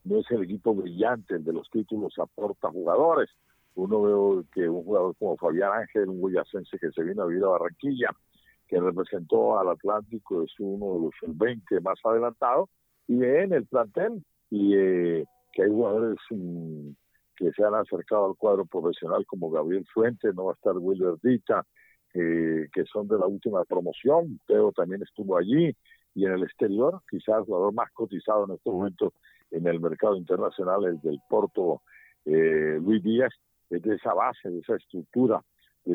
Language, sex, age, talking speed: Spanish, male, 50-69, 175 wpm